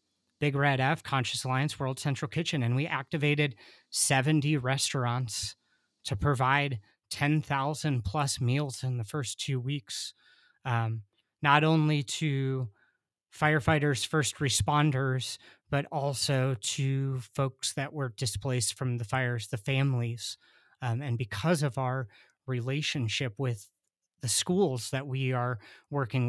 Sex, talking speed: male, 125 wpm